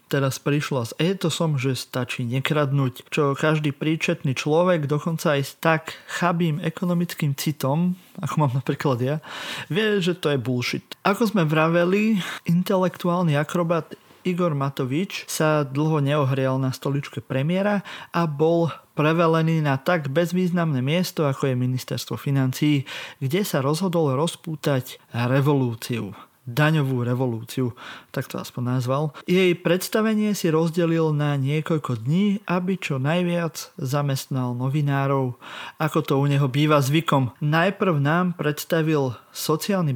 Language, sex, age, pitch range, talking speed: Slovak, male, 30-49, 140-175 Hz, 125 wpm